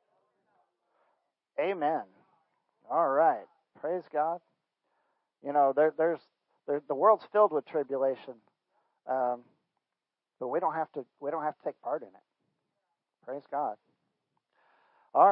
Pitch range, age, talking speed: 145-195 Hz, 50-69, 125 wpm